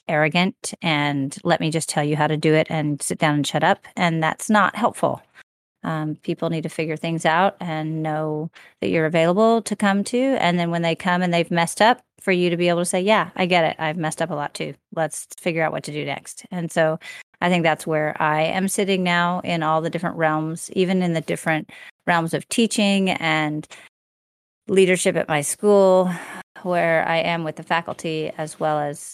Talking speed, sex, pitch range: 215 wpm, female, 150-170 Hz